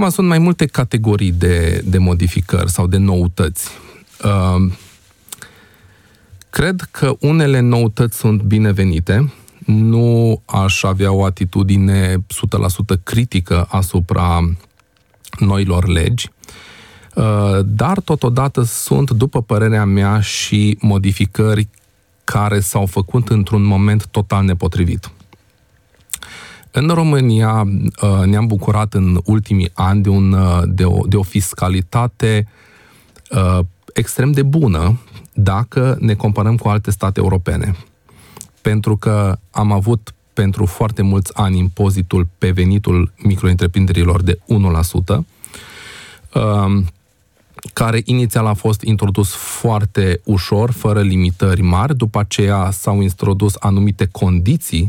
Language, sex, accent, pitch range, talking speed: Romanian, male, native, 95-110 Hz, 100 wpm